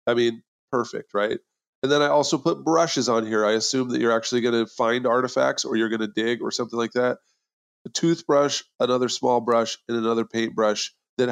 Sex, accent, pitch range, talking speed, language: male, American, 110-130 Hz, 205 wpm, English